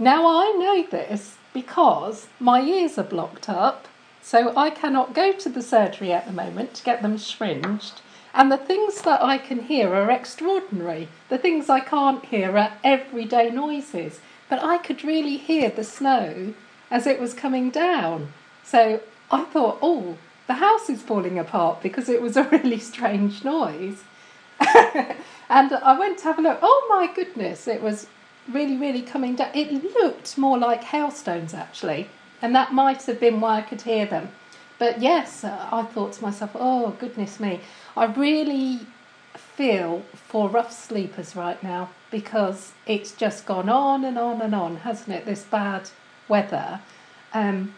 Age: 40-59